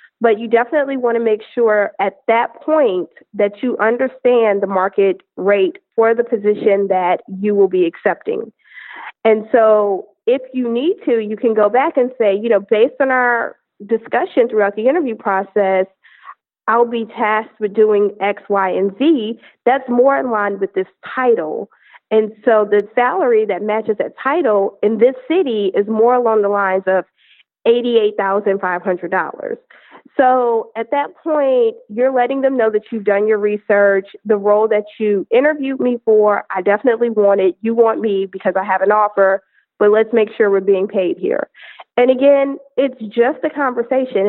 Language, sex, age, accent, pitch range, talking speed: English, female, 40-59, American, 205-250 Hz, 170 wpm